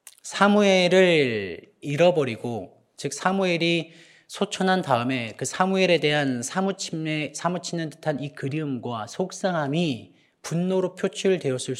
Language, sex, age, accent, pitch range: Korean, male, 40-59, native, 135-180 Hz